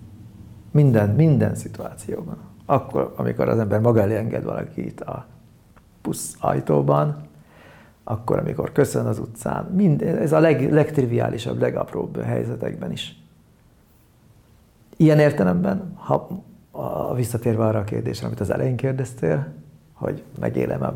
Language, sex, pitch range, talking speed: Hungarian, male, 105-130 Hz, 115 wpm